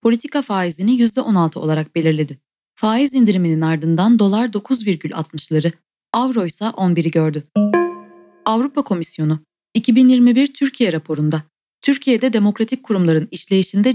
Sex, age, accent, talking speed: female, 30-49, native, 100 wpm